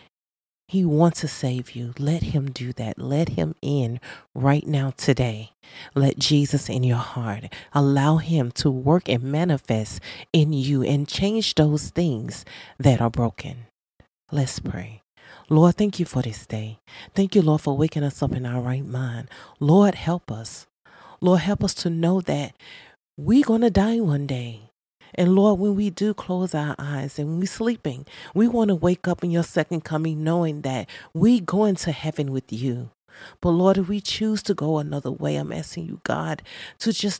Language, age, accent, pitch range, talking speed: English, 40-59, American, 125-175 Hz, 185 wpm